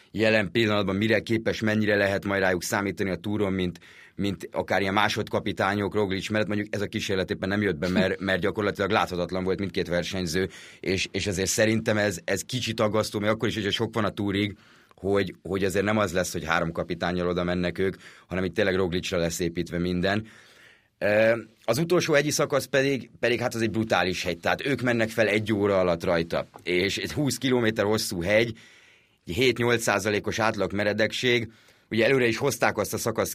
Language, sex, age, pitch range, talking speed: Hungarian, male, 30-49, 95-115 Hz, 185 wpm